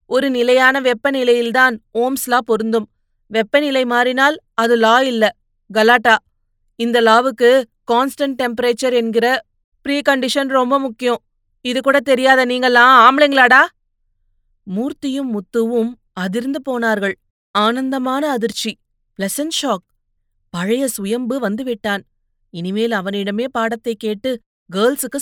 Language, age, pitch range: Tamil, 30-49, 190-245 Hz